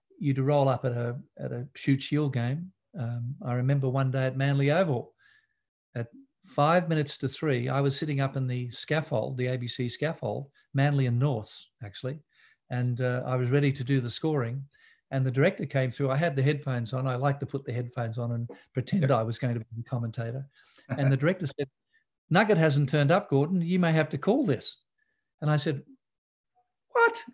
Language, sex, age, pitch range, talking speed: English, male, 50-69, 130-170 Hz, 200 wpm